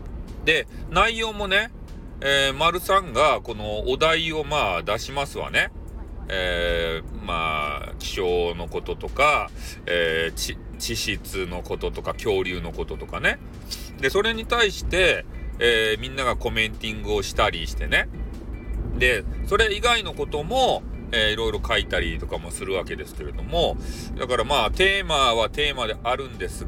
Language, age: Japanese, 40-59